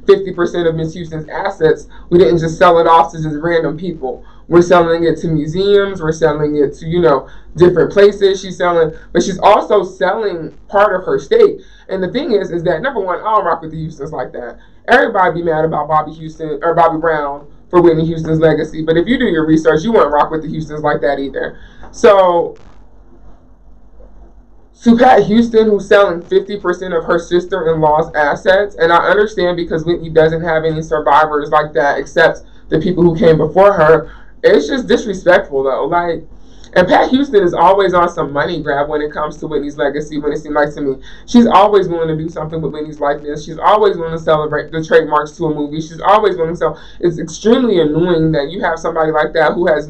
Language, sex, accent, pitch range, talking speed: English, male, American, 155-185 Hz, 210 wpm